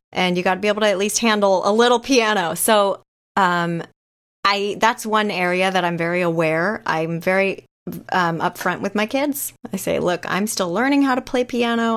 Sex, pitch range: female, 195-260 Hz